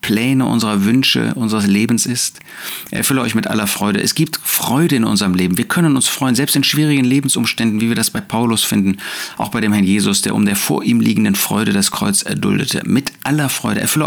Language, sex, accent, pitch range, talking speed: German, male, German, 105-140 Hz, 215 wpm